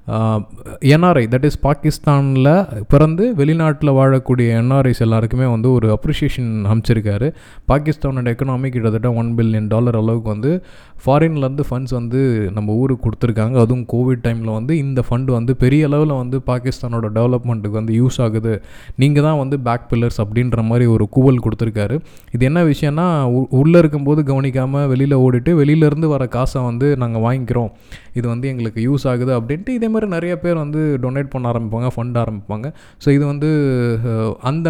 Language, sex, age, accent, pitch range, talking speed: Tamil, male, 20-39, native, 115-140 Hz, 150 wpm